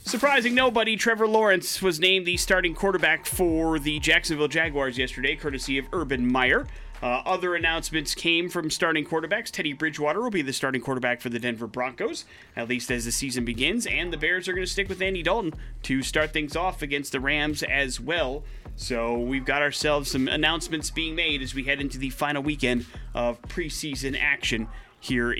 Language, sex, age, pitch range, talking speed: English, male, 30-49, 125-175 Hz, 190 wpm